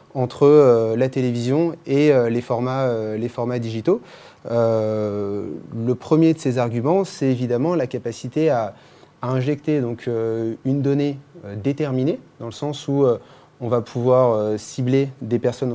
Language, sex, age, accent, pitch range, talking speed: French, male, 30-49, French, 120-150 Hz, 150 wpm